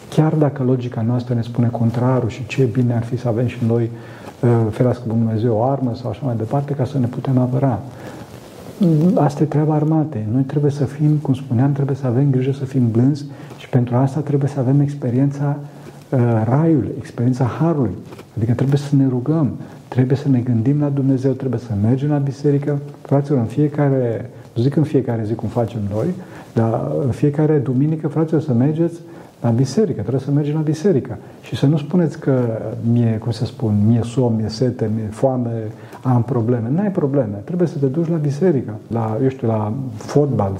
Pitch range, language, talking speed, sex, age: 120-150 Hz, Romanian, 190 wpm, male, 50-69